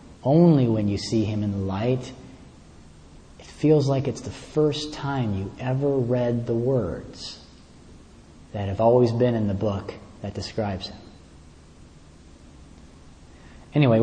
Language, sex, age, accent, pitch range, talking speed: English, male, 40-59, American, 85-125 Hz, 135 wpm